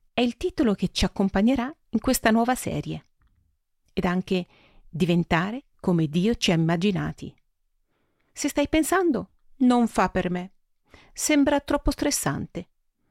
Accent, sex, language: native, female, Italian